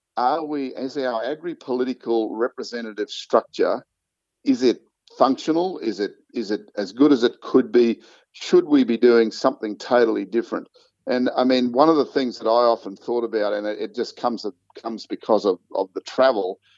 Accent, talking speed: Australian, 180 wpm